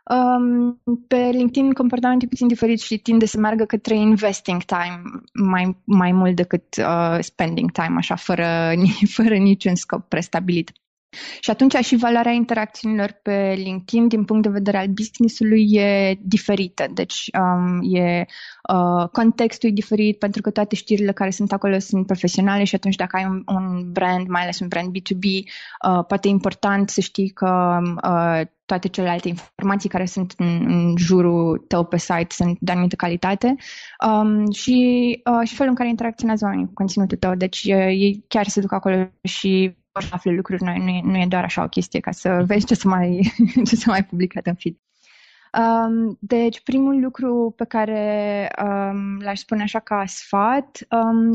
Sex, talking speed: female, 170 wpm